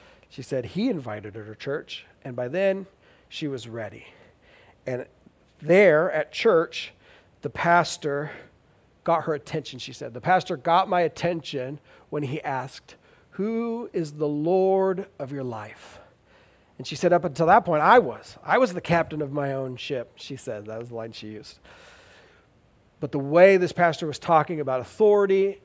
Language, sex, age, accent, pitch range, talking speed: English, male, 40-59, American, 120-165 Hz, 170 wpm